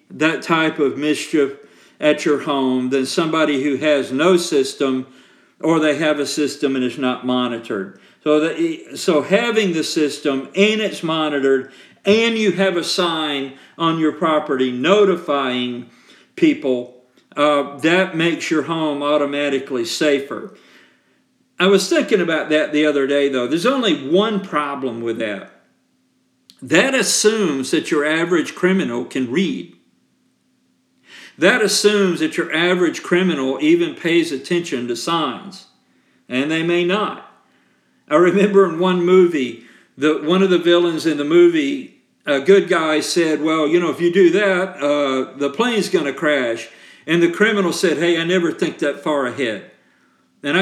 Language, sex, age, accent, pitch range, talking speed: English, male, 50-69, American, 140-185 Hz, 150 wpm